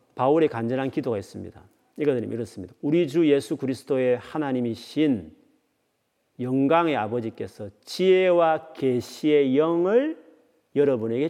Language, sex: Korean, male